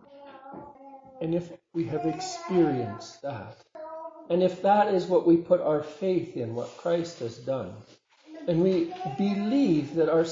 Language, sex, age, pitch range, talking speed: English, male, 50-69, 150-200 Hz, 145 wpm